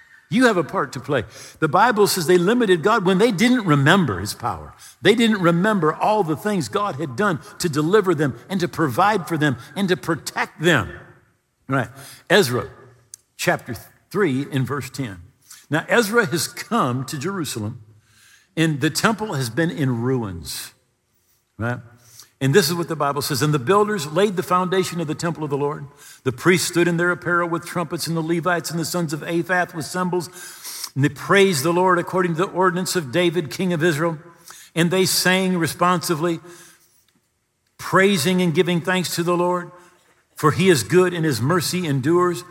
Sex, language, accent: male, English, American